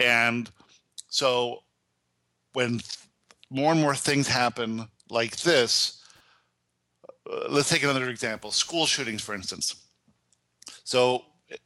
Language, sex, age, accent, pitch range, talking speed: English, male, 50-69, American, 110-135 Hz, 100 wpm